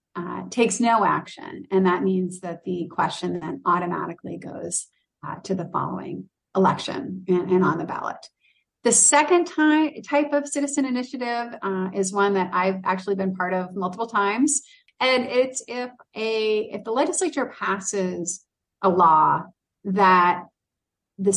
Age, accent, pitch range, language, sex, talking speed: 30-49, American, 180-220 Hz, English, female, 150 wpm